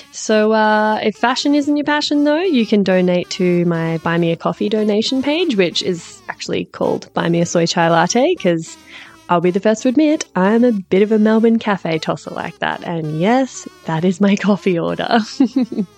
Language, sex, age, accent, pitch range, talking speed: English, female, 20-39, Australian, 180-240 Hz, 200 wpm